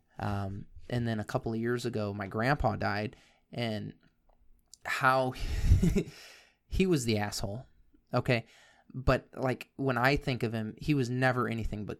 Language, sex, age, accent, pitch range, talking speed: English, male, 20-39, American, 110-125 Hz, 150 wpm